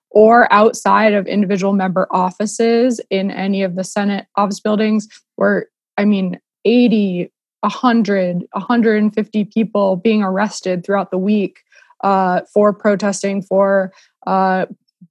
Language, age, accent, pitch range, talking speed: English, 20-39, American, 185-215 Hz, 120 wpm